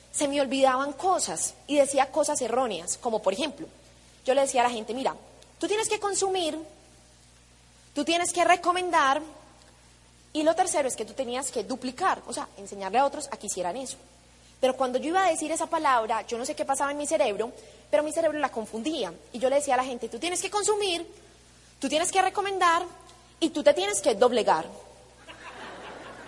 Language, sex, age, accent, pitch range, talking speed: Spanish, female, 20-39, Colombian, 220-300 Hz, 195 wpm